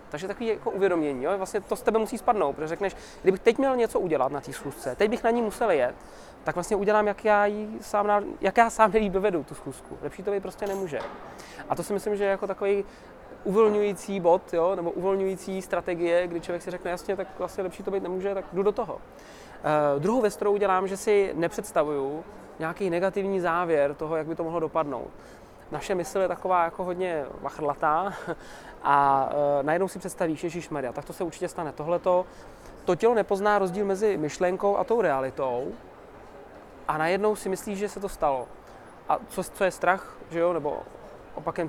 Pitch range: 170-200 Hz